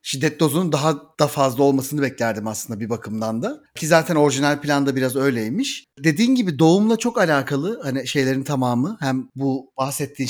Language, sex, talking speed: Turkish, male, 165 wpm